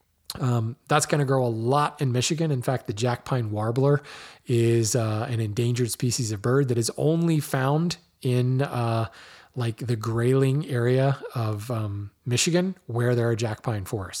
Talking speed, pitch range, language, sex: 165 wpm, 115-145 Hz, English, male